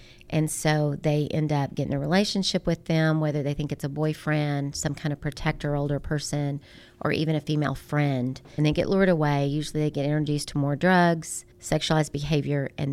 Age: 40-59